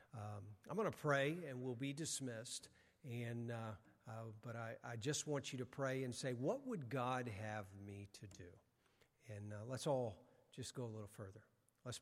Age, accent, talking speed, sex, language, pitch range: 50-69, American, 195 wpm, male, English, 115-140 Hz